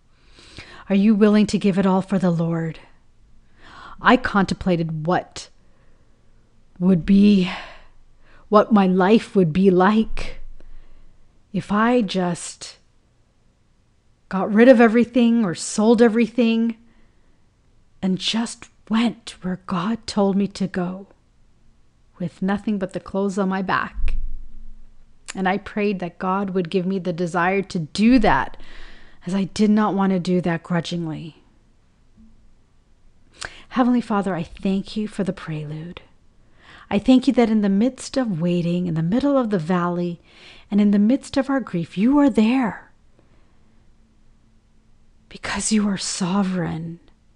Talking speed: 135 wpm